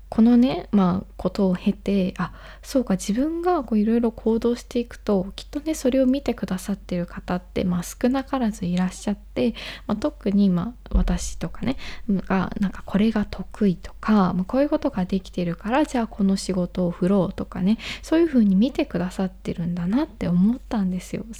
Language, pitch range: Japanese, 190-245 Hz